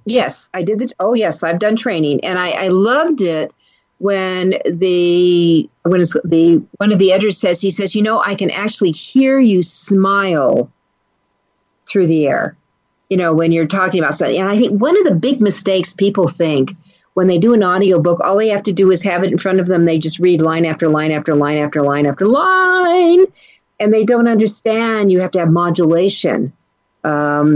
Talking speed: 205 wpm